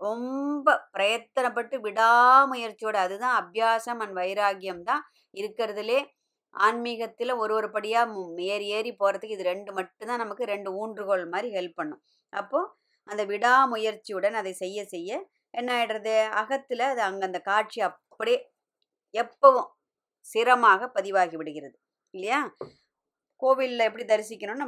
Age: 20-39